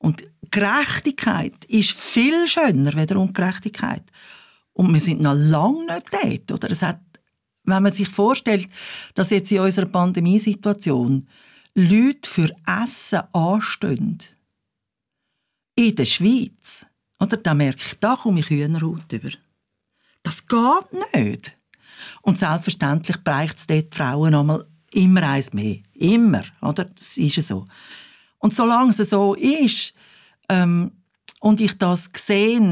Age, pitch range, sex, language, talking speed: 60-79, 155-210 Hz, female, German, 125 wpm